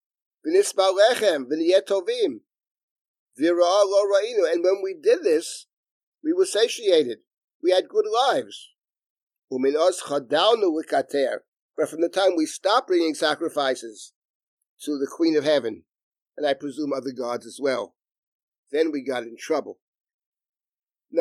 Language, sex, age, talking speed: English, male, 50-69, 110 wpm